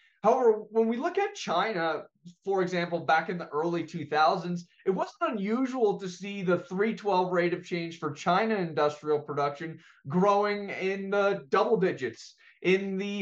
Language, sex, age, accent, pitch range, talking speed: English, male, 20-39, American, 155-205 Hz, 155 wpm